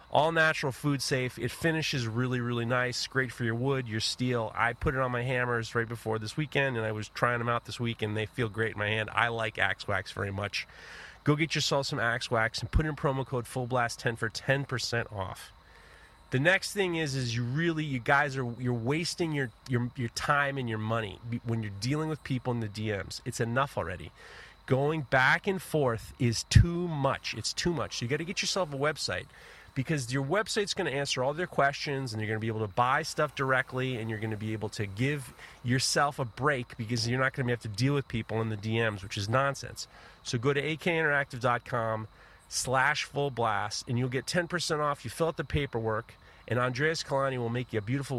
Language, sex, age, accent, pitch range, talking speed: English, male, 30-49, American, 115-140 Hz, 225 wpm